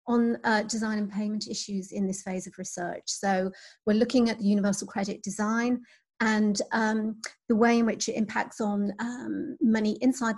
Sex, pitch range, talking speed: female, 195-240 Hz, 180 wpm